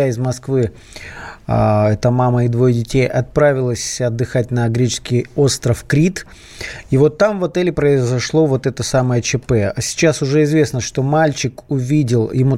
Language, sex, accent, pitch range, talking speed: Russian, male, native, 125-155 Hz, 145 wpm